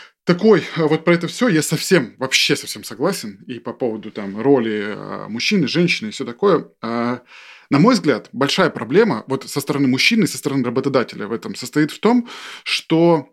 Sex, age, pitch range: male, 20-39, 130-170 Hz